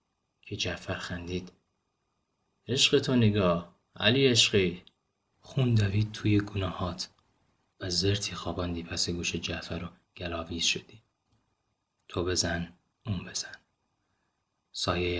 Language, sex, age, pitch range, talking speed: Persian, male, 30-49, 90-100 Hz, 105 wpm